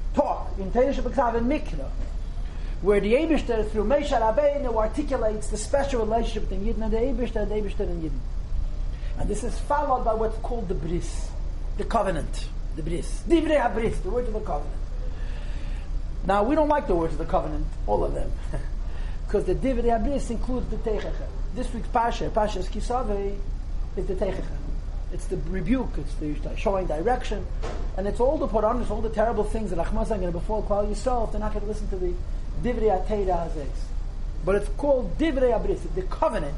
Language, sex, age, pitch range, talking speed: English, male, 40-59, 180-240 Hz, 180 wpm